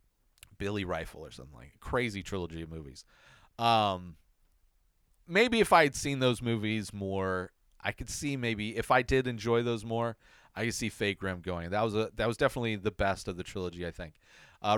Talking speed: 195 wpm